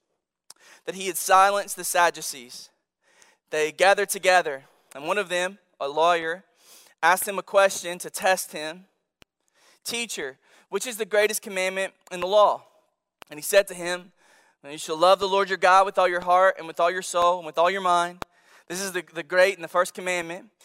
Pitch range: 165-190 Hz